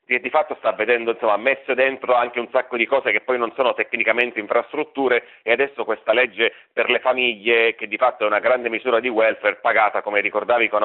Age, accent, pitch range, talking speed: 40-59, native, 115-130 Hz, 215 wpm